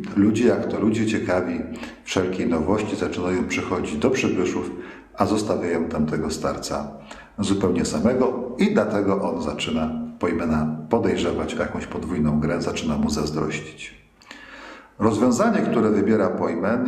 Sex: male